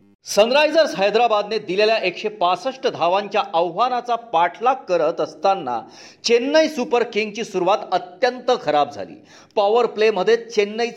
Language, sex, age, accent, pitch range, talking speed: Marathi, male, 40-59, native, 185-255 Hz, 90 wpm